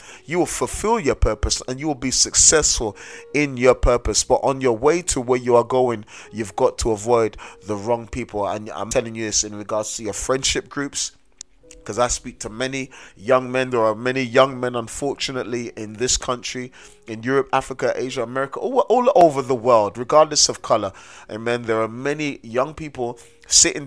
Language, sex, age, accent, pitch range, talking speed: English, male, 30-49, British, 120-140 Hz, 190 wpm